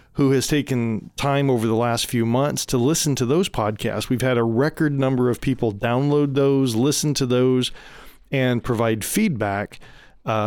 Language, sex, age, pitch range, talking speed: English, male, 40-59, 115-140 Hz, 170 wpm